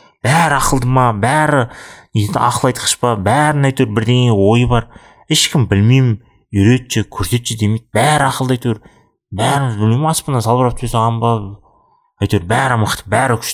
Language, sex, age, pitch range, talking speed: Russian, male, 30-49, 100-130 Hz, 120 wpm